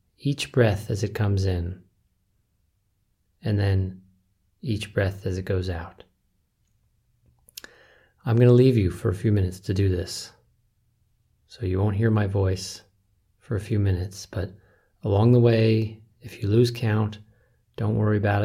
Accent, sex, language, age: American, male, English, 30-49